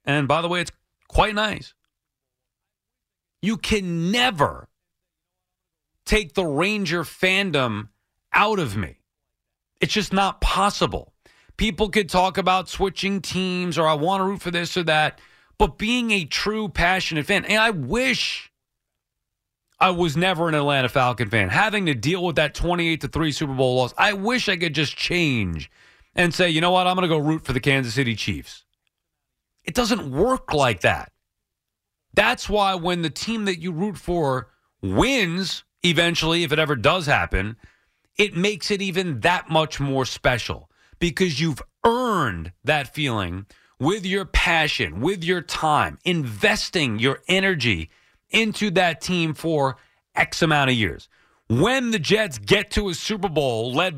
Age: 40-59